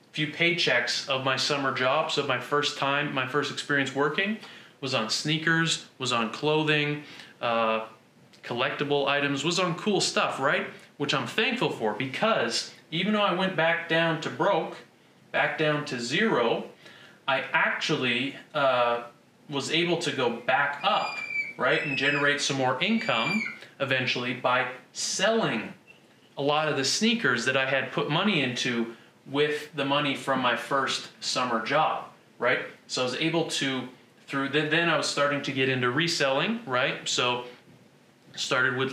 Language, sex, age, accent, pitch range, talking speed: English, male, 30-49, American, 125-150 Hz, 155 wpm